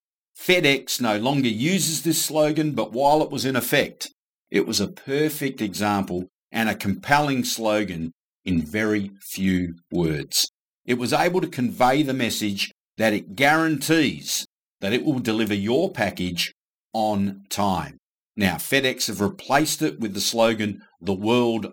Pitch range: 100-145 Hz